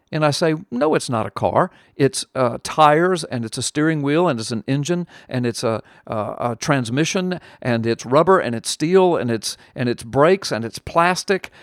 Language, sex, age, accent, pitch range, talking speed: English, male, 50-69, American, 125-170 Hz, 205 wpm